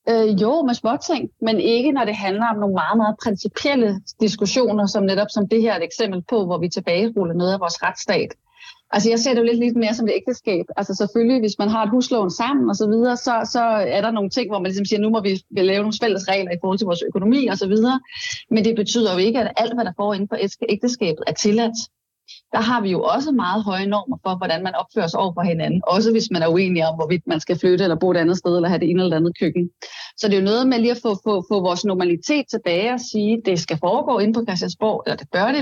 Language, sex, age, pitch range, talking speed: Danish, female, 30-49, 185-230 Hz, 265 wpm